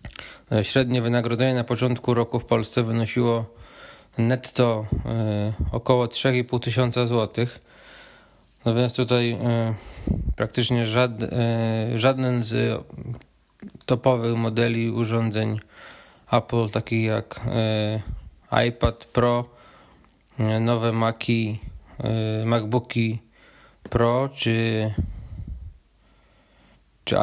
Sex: male